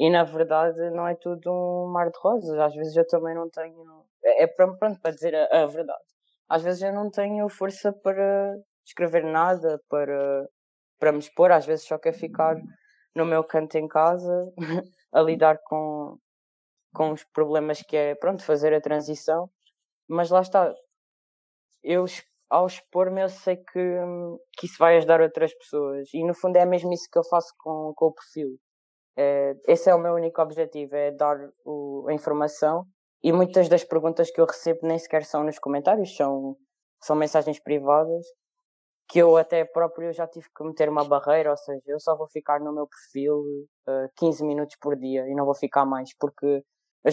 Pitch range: 150-175 Hz